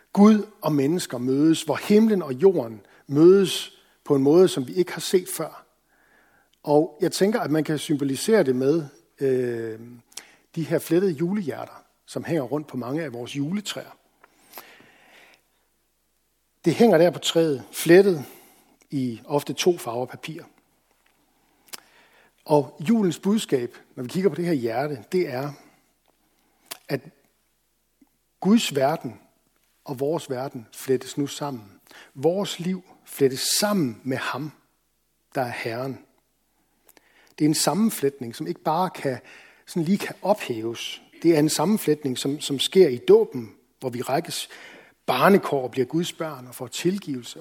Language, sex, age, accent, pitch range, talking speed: Danish, male, 60-79, native, 135-185 Hz, 140 wpm